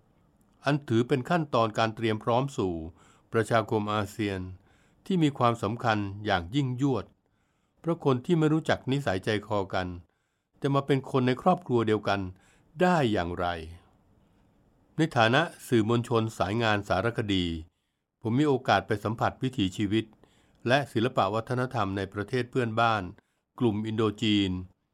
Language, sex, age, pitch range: Thai, male, 60-79, 100-125 Hz